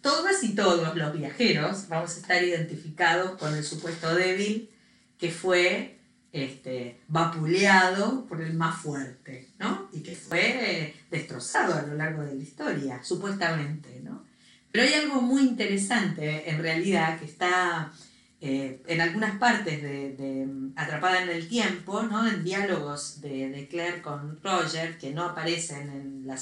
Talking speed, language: 150 wpm, Spanish